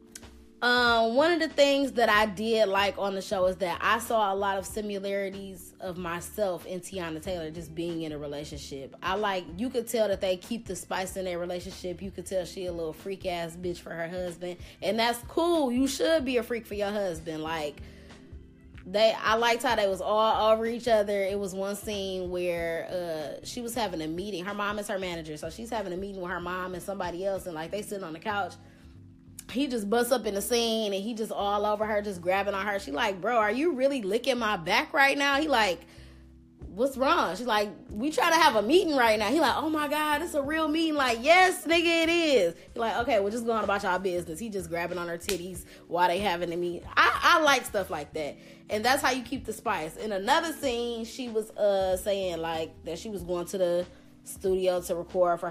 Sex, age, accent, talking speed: female, 20-39, American, 235 wpm